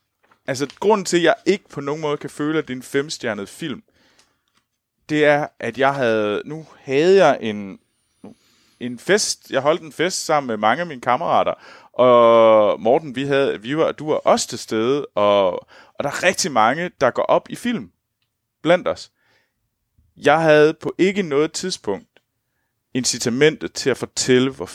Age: 30-49